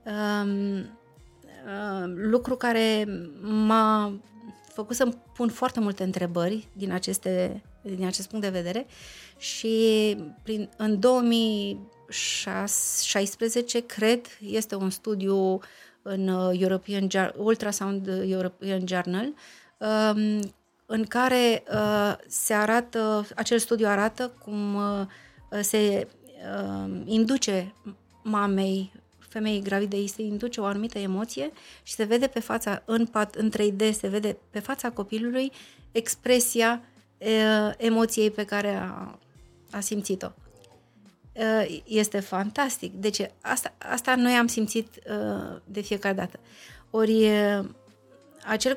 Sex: female